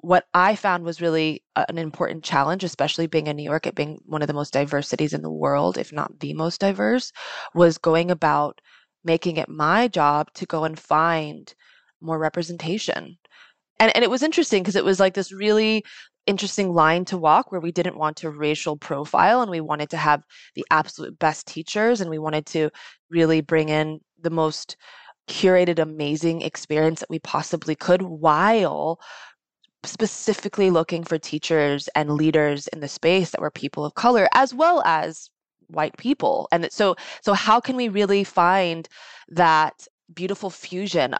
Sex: female